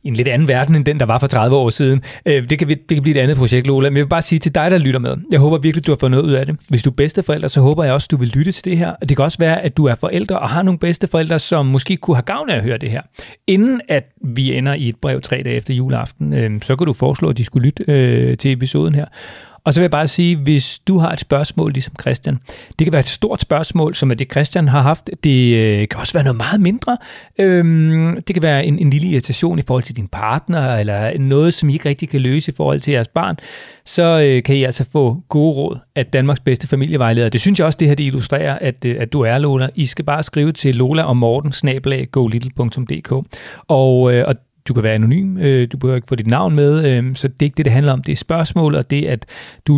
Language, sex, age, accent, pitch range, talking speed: Danish, male, 30-49, native, 125-155 Hz, 270 wpm